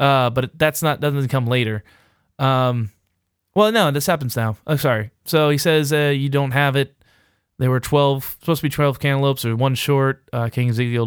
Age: 20-39